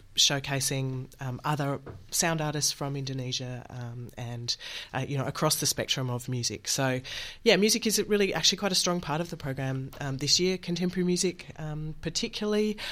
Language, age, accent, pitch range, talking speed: English, 30-49, Australian, 135-160 Hz, 170 wpm